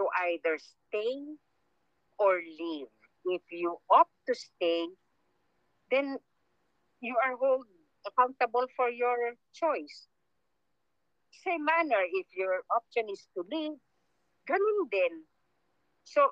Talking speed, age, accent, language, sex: 105 wpm, 50-69, Filipino, English, female